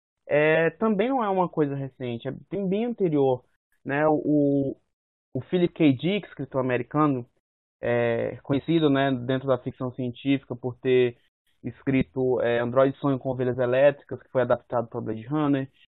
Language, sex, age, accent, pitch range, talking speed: Portuguese, male, 20-39, Brazilian, 130-170 Hz, 155 wpm